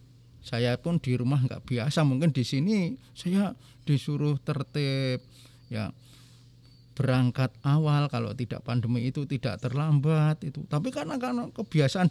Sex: male